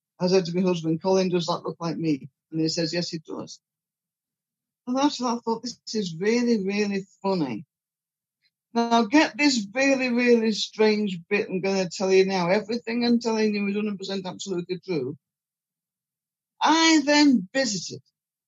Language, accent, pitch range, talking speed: English, British, 165-235 Hz, 165 wpm